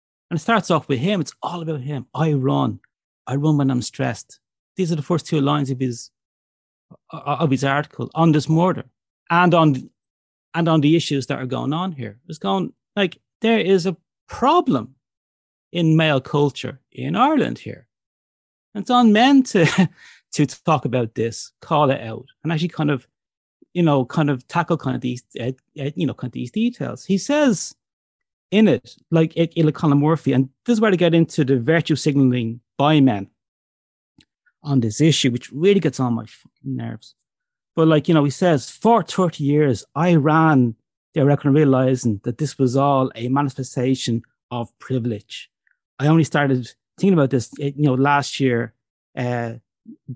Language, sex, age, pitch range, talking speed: English, male, 30-49, 125-165 Hz, 175 wpm